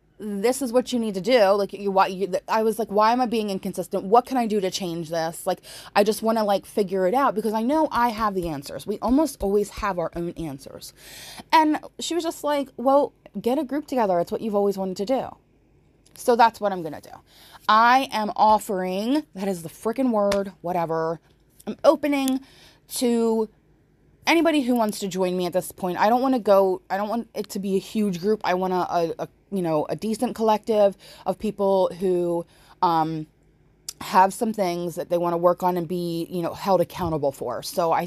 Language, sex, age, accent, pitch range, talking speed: English, female, 20-39, American, 175-240 Hz, 220 wpm